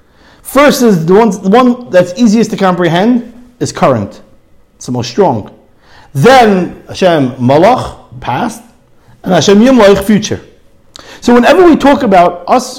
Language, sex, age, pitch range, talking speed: English, male, 50-69, 155-220 Hz, 140 wpm